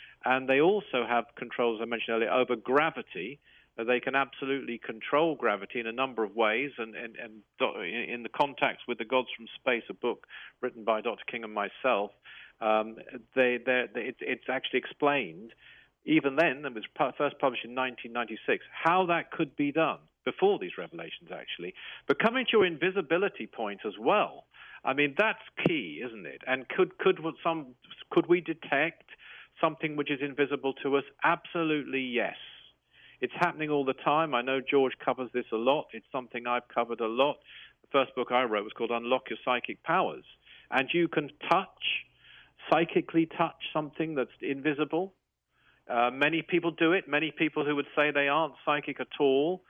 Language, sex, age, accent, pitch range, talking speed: English, male, 50-69, British, 125-160 Hz, 180 wpm